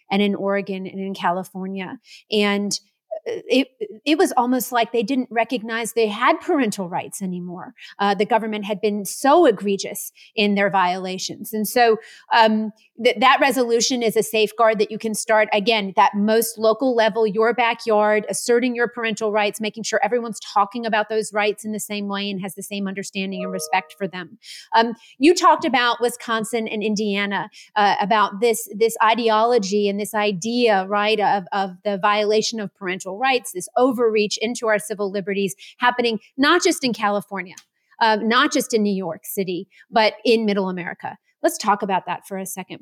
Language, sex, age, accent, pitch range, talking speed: English, female, 30-49, American, 200-230 Hz, 175 wpm